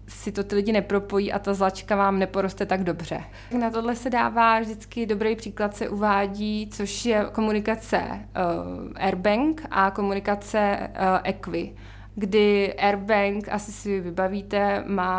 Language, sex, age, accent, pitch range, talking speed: Czech, female, 20-39, native, 185-210 Hz, 140 wpm